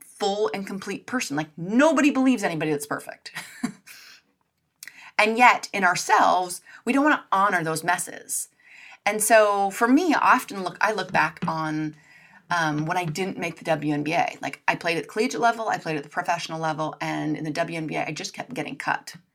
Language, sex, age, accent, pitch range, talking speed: English, female, 30-49, American, 160-240 Hz, 185 wpm